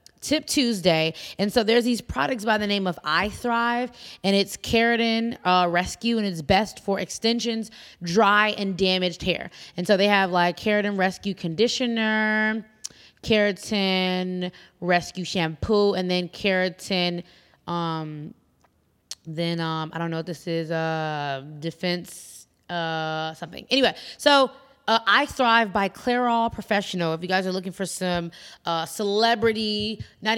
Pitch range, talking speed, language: 170-215 Hz, 140 wpm, English